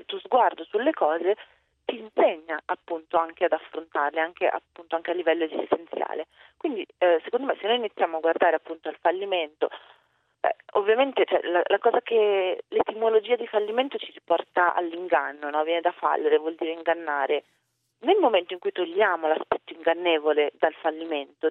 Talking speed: 160 wpm